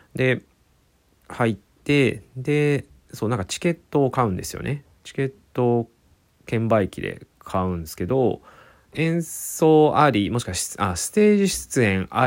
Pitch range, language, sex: 90-145 Hz, Japanese, male